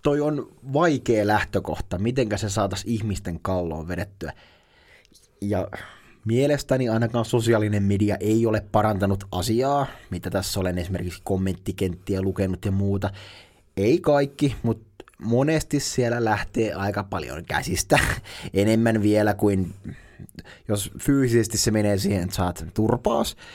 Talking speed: 115 wpm